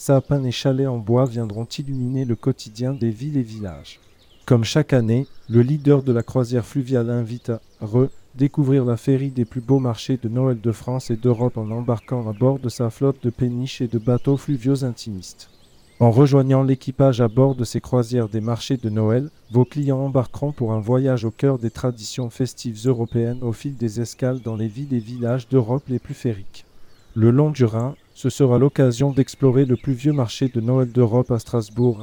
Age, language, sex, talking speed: 40-59, French, male, 195 wpm